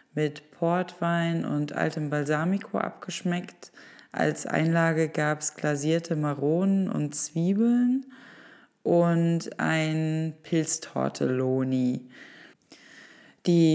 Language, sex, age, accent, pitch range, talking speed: German, female, 20-39, German, 160-195 Hz, 80 wpm